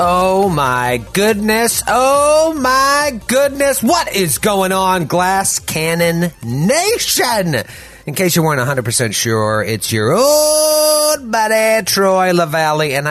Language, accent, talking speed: English, American, 120 wpm